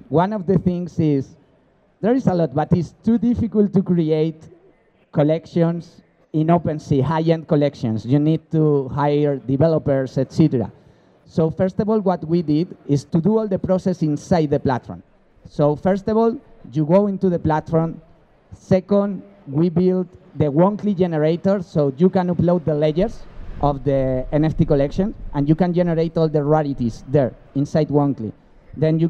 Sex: male